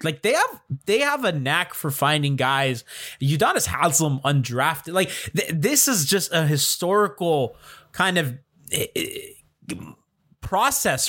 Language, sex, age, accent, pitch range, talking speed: English, male, 20-39, American, 150-200 Hz, 125 wpm